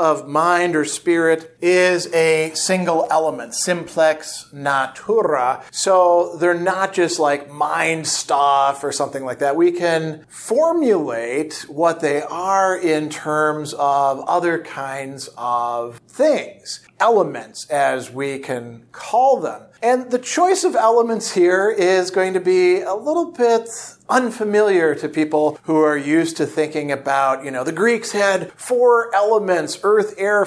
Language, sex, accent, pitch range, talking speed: English, male, American, 150-200 Hz, 140 wpm